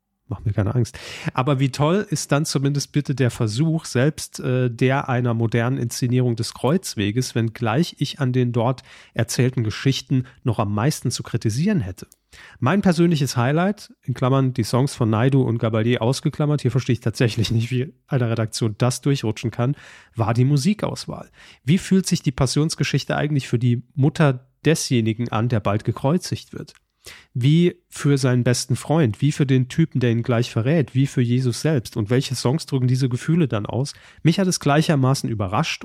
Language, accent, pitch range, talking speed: German, German, 120-145 Hz, 175 wpm